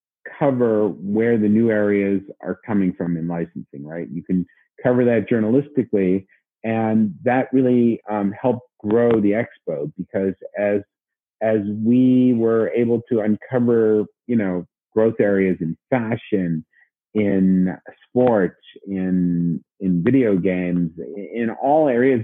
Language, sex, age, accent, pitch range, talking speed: English, male, 50-69, American, 100-120 Hz, 125 wpm